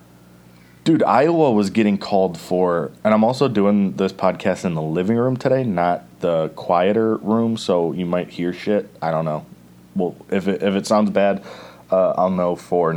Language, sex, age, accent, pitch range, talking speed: English, male, 30-49, American, 70-115 Hz, 185 wpm